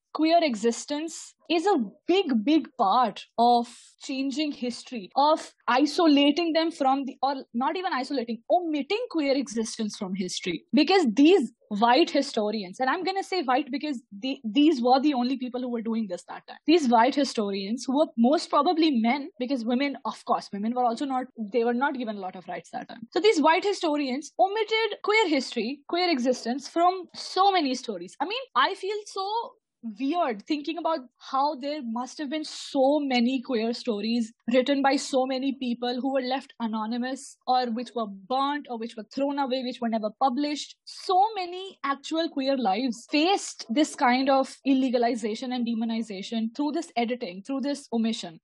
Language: English